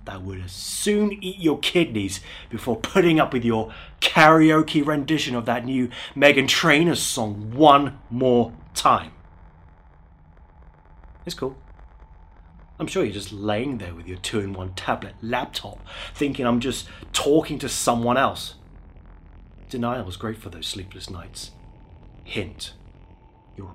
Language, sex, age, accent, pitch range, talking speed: English, male, 30-49, British, 90-130 Hz, 130 wpm